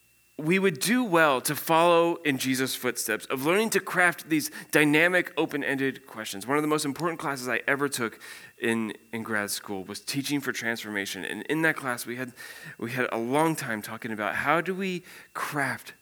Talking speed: 190 wpm